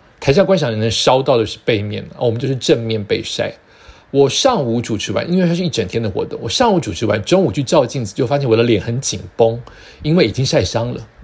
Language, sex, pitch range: Chinese, male, 115-170 Hz